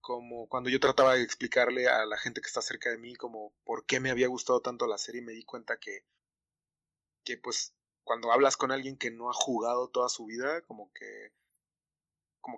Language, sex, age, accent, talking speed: Spanish, male, 20-39, Mexican, 205 wpm